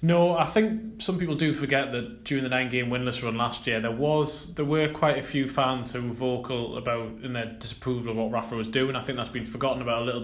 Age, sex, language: 20-39, male, English